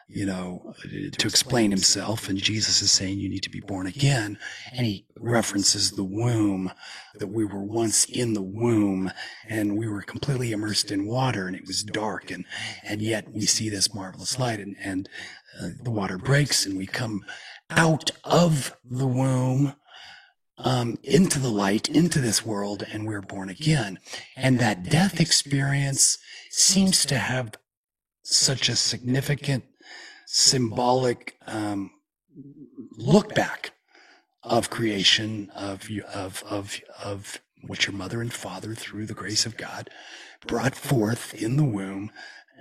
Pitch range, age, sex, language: 100-130 Hz, 40-59, male, English